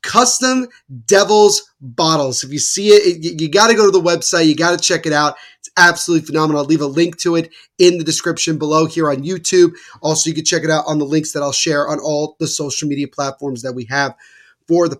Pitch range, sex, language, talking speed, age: 145-175 Hz, male, English, 245 wpm, 30-49